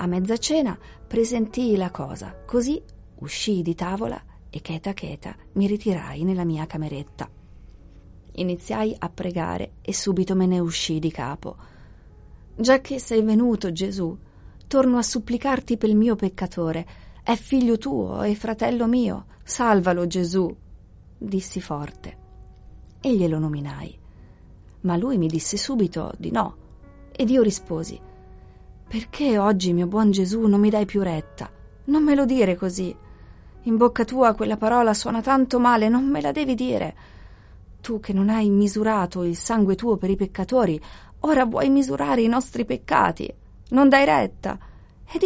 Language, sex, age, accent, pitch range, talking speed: Italian, female, 30-49, native, 160-235 Hz, 145 wpm